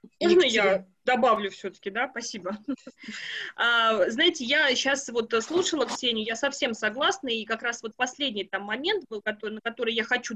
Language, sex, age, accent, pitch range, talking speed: Russian, female, 20-39, native, 215-280 Hz, 170 wpm